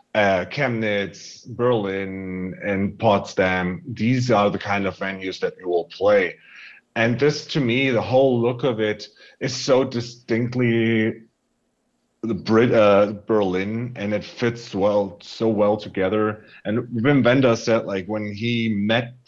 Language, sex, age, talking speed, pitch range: English, male, 30-49, 145 wpm, 100-125 Hz